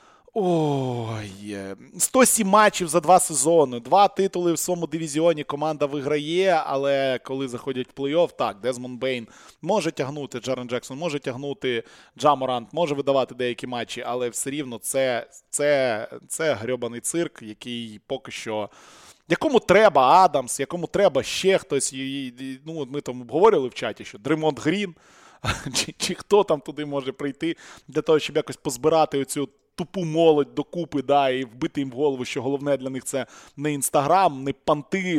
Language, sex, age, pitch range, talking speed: Ukrainian, male, 20-39, 130-170 Hz, 150 wpm